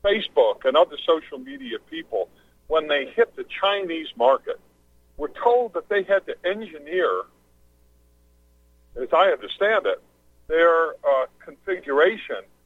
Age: 50-69